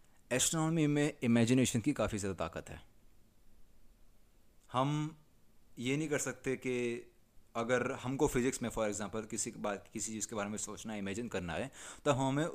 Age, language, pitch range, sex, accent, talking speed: 30-49, Hindi, 105-130 Hz, male, native, 160 wpm